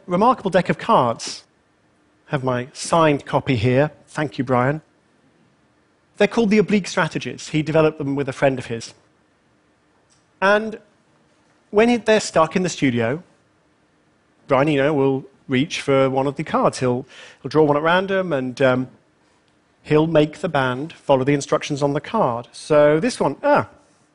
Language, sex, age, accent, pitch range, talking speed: Russian, male, 40-59, British, 135-205 Hz, 160 wpm